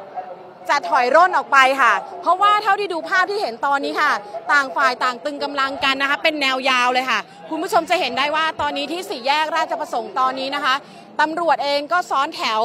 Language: Thai